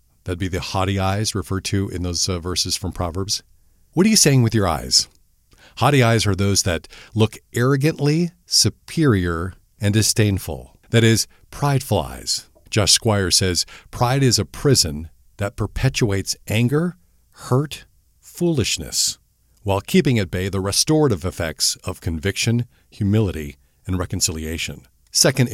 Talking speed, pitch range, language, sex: 140 wpm, 90-115 Hz, English, male